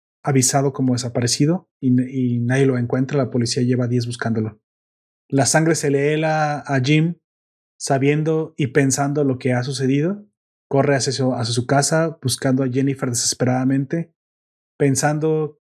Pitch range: 125-145 Hz